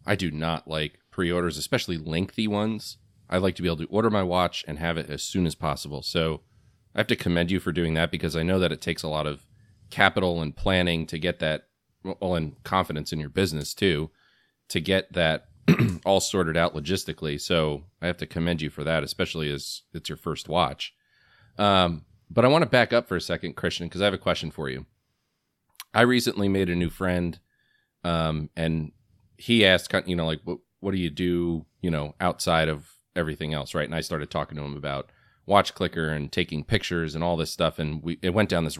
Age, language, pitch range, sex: 30-49, English, 80-95 Hz, male